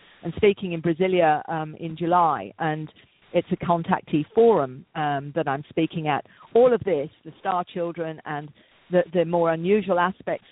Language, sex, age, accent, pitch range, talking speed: English, female, 50-69, British, 165-195 Hz, 165 wpm